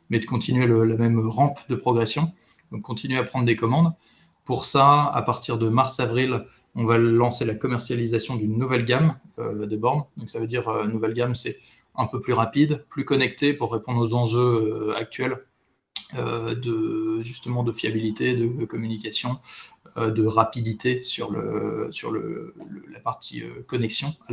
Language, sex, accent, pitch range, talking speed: French, male, French, 115-130 Hz, 180 wpm